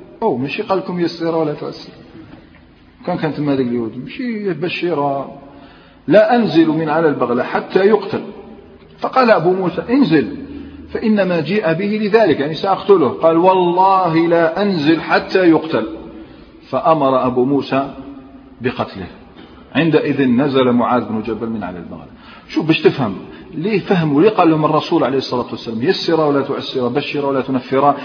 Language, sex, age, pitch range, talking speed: Arabic, male, 40-59, 135-185 Hz, 140 wpm